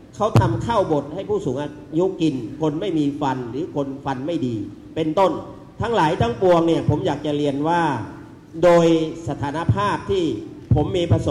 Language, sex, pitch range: Thai, male, 145-215 Hz